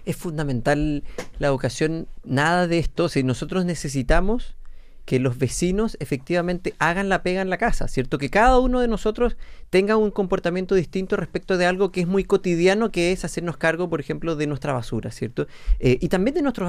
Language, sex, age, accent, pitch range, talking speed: Spanish, male, 30-49, Argentinian, 140-180 Hz, 185 wpm